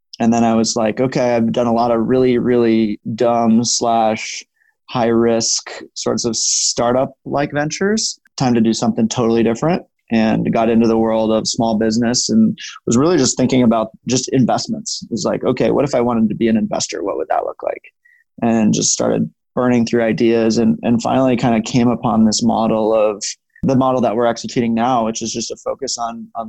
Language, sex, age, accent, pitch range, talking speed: English, male, 20-39, American, 115-130 Hz, 200 wpm